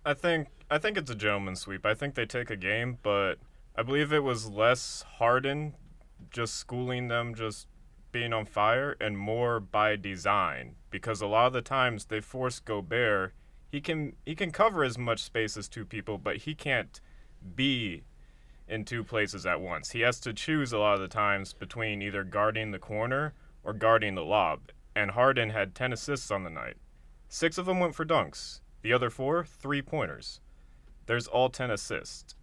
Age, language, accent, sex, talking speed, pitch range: 30-49, English, American, male, 185 wpm, 105-130 Hz